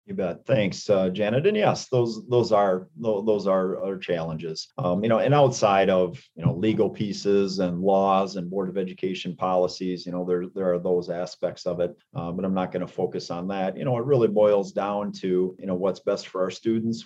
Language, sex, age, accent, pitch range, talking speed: English, male, 30-49, American, 90-105 Hz, 220 wpm